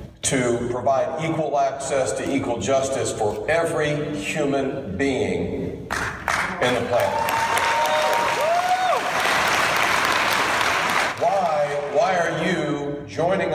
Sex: male